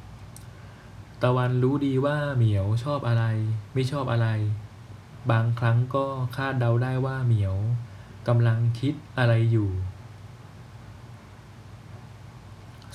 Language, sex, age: Thai, male, 20-39